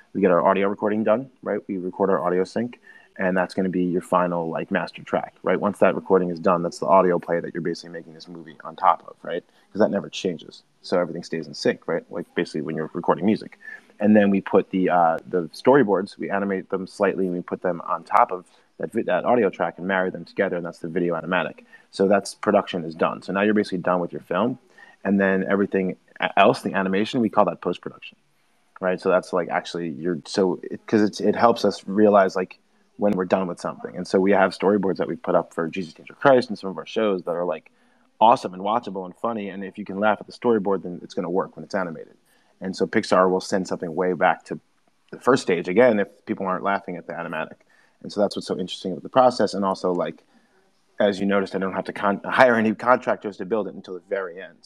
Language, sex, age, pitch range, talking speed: English, male, 30-49, 90-100 Hz, 245 wpm